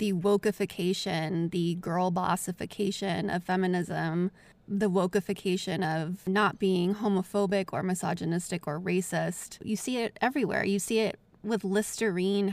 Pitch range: 180-210 Hz